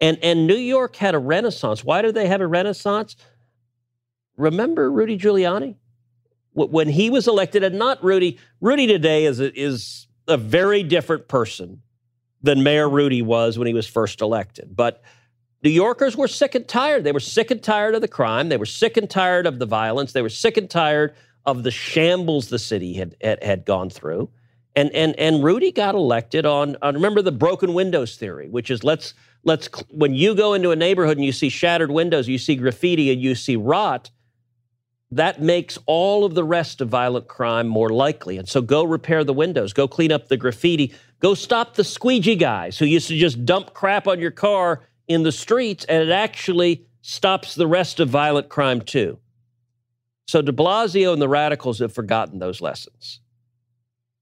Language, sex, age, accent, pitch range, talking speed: English, male, 40-59, American, 120-180 Hz, 190 wpm